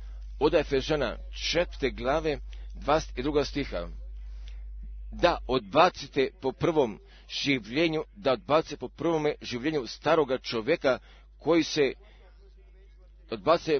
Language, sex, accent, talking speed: Croatian, male, native, 70 wpm